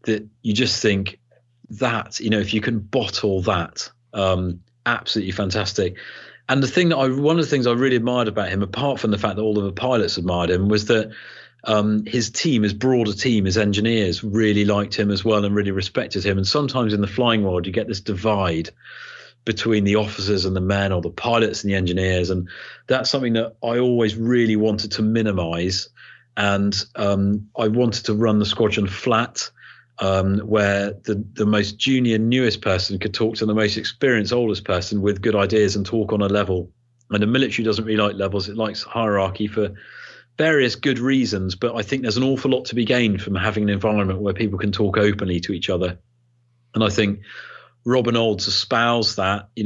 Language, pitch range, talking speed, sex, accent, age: English, 100-115 Hz, 205 wpm, male, British, 40-59